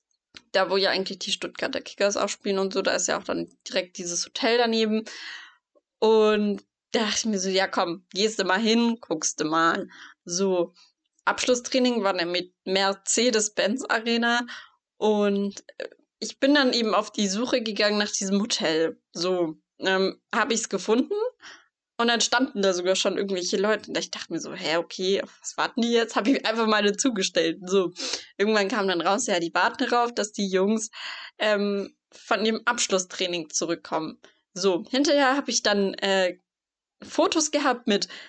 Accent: German